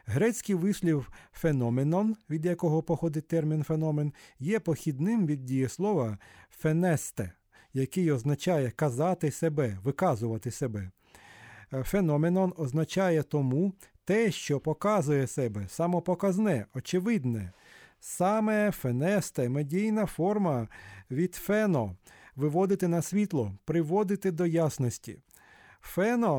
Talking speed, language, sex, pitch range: 95 wpm, Ukrainian, male, 130-185 Hz